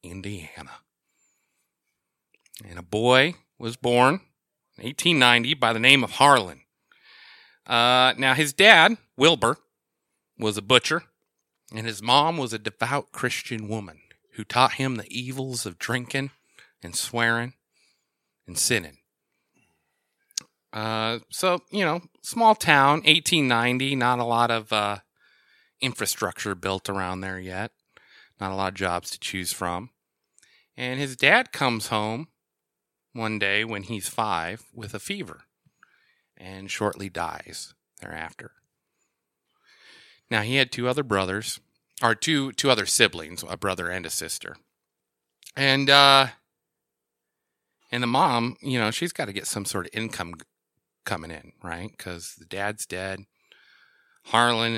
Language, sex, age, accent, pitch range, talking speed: English, male, 30-49, American, 95-130 Hz, 135 wpm